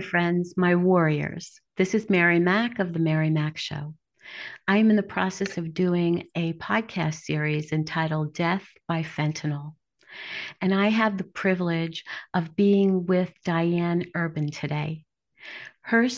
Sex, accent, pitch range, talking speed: female, American, 160-195 Hz, 135 wpm